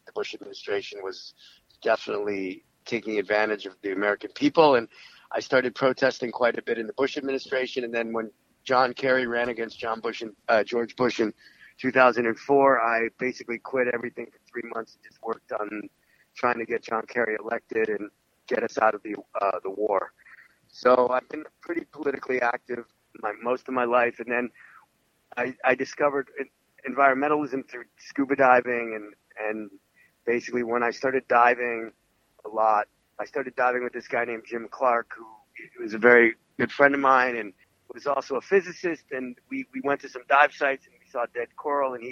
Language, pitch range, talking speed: English, 115-135 Hz, 180 wpm